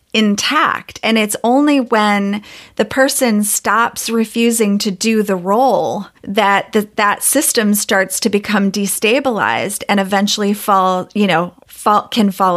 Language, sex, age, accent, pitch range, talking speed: English, female, 30-49, American, 200-245 Hz, 130 wpm